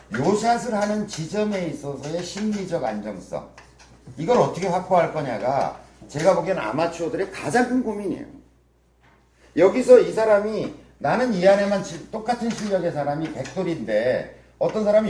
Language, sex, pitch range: Korean, male, 120-190 Hz